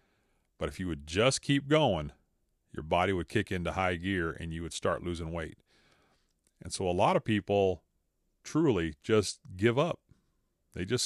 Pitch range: 80-100 Hz